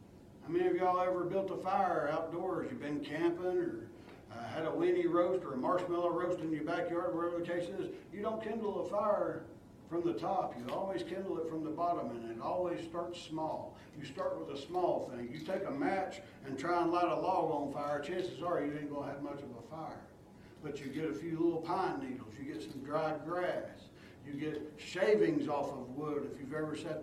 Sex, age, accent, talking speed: male, 60-79, American, 220 wpm